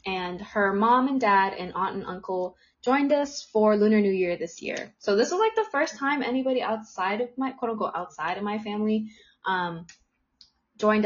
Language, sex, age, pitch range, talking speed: English, female, 20-39, 190-250 Hz, 195 wpm